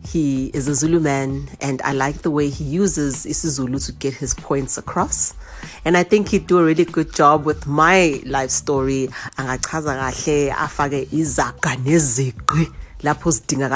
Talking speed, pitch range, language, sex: 145 wpm, 140-180 Hz, English, female